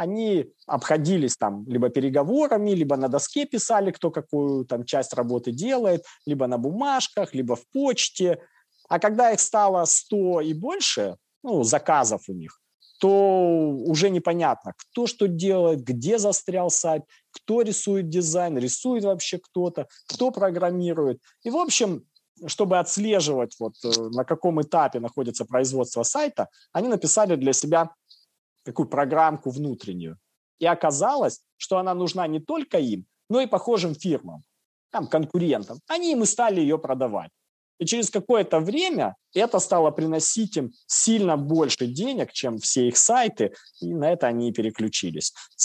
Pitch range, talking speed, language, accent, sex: 130-200 Hz, 145 wpm, Russian, native, male